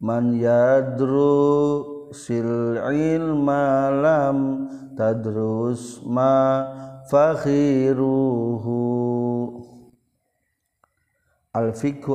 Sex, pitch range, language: male, 110-135 Hz, Indonesian